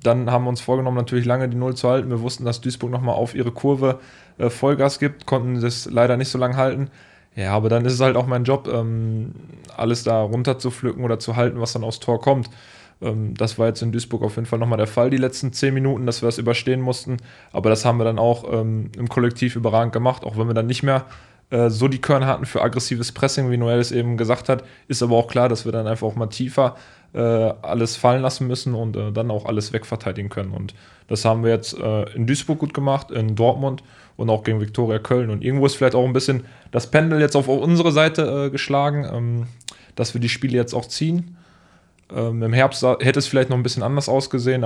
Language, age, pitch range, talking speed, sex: German, 10-29, 115-130 Hz, 225 wpm, male